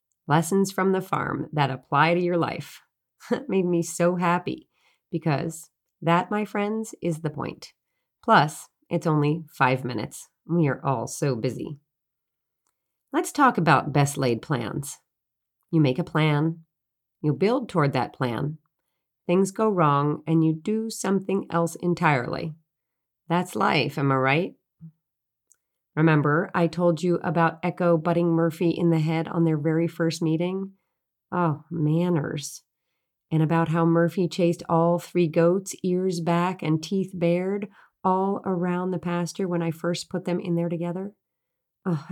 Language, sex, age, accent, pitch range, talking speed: English, female, 40-59, American, 155-185 Hz, 150 wpm